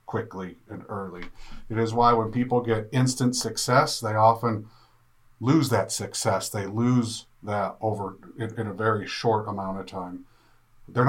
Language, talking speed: English, 155 wpm